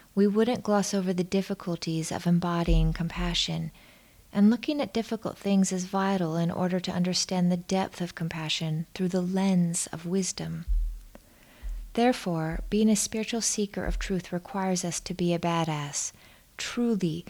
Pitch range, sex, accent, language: 165-195 Hz, female, American, English